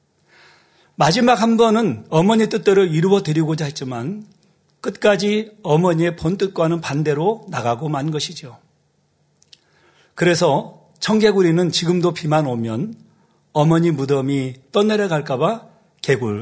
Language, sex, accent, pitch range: Korean, male, native, 150-210 Hz